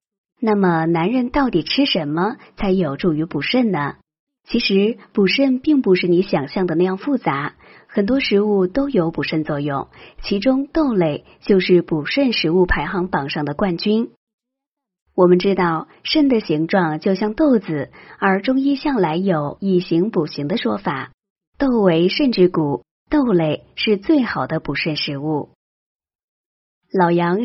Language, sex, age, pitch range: Chinese, male, 30-49, 170-235 Hz